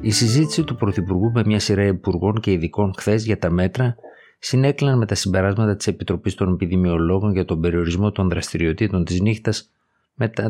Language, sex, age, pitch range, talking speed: Greek, male, 50-69, 90-105 Hz, 170 wpm